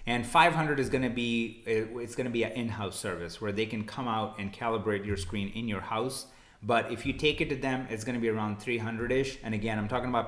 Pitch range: 105-125 Hz